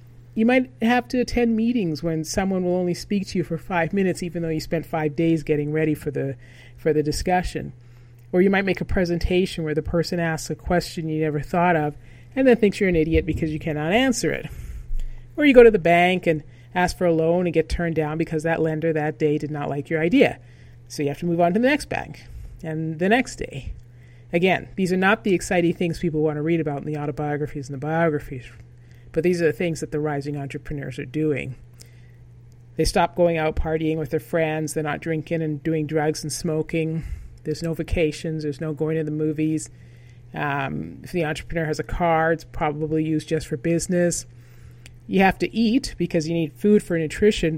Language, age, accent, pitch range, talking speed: English, 40-59, American, 145-175 Hz, 215 wpm